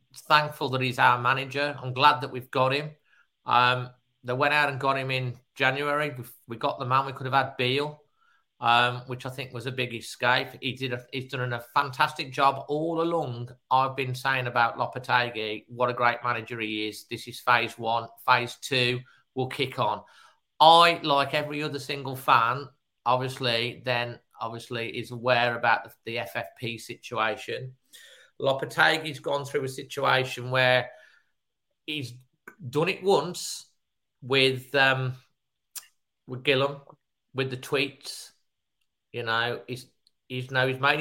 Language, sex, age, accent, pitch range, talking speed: English, male, 40-59, British, 120-140 Hz, 155 wpm